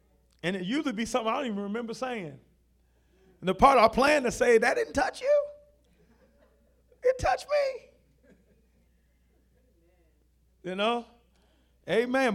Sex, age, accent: male, 40-59, American